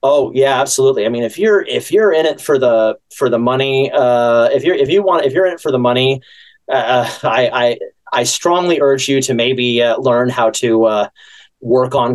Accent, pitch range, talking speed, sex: American, 125-190 Hz, 220 wpm, male